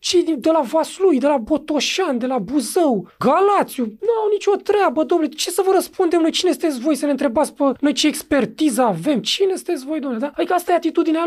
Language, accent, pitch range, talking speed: Romanian, native, 245-320 Hz, 225 wpm